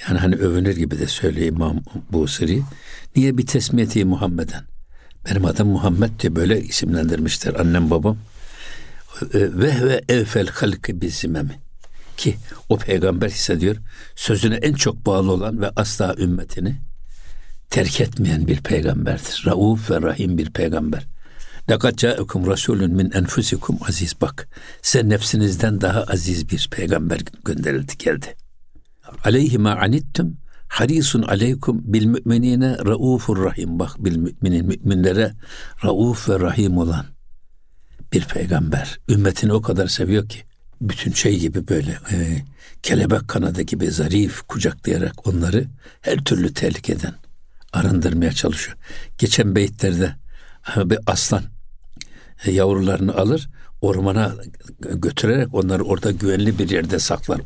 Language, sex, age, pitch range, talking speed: Turkish, male, 60-79, 90-115 Hz, 115 wpm